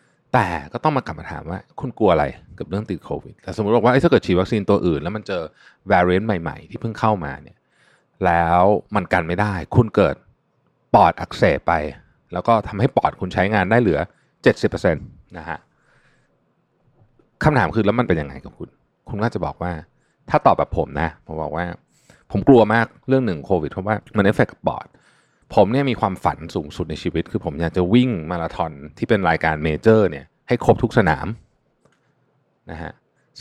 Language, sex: Thai, male